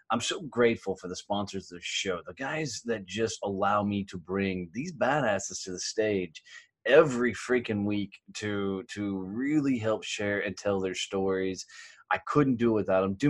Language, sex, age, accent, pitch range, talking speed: English, male, 20-39, American, 100-125 Hz, 185 wpm